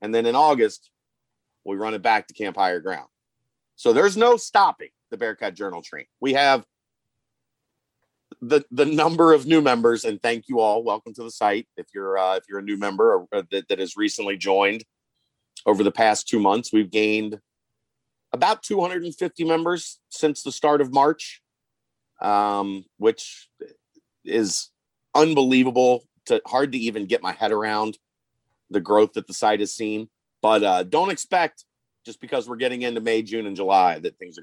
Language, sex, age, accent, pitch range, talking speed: English, male, 40-59, American, 110-160 Hz, 175 wpm